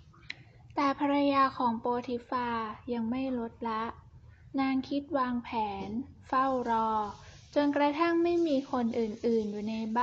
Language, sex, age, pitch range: Thai, female, 10-29, 230-280 Hz